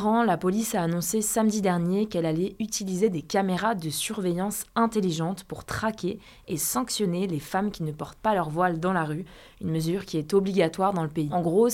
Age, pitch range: 20-39, 165-200 Hz